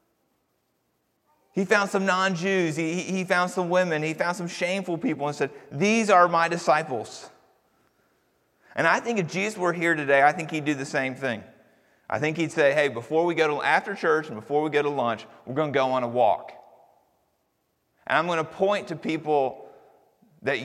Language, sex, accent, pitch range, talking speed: English, male, American, 130-175 Hz, 195 wpm